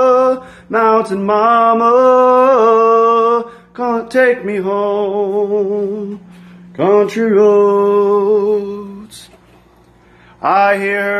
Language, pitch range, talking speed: English, 205-255 Hz, 55 wpm